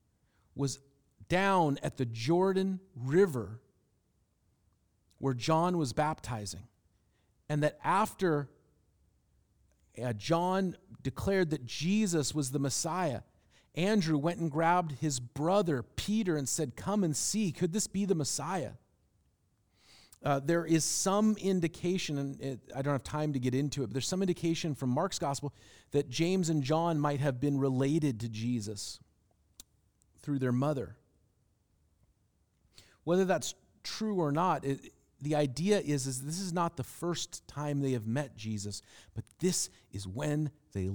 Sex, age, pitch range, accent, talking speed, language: male, 40-59, 110-165 Hz, American, 140 wpm, English